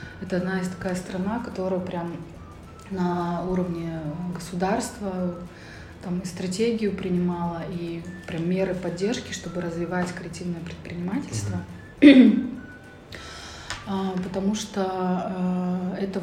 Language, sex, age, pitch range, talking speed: Russian, female, 20-39, 180-195 Hz, 90 wpm